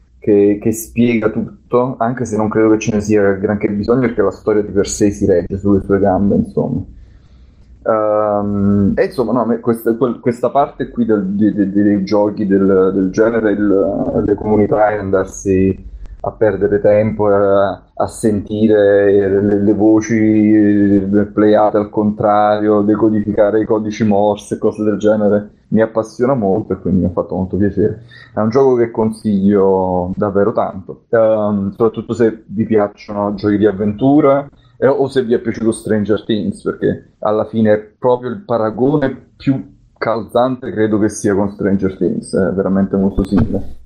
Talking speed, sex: 155 wpm, male